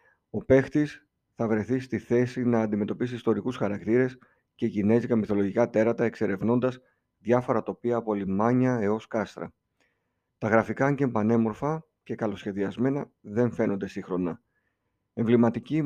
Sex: male